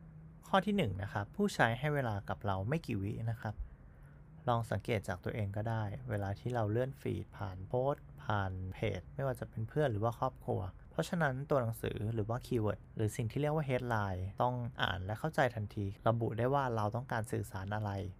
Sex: male